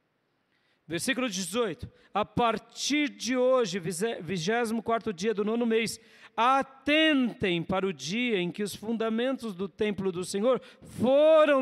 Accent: Brazilian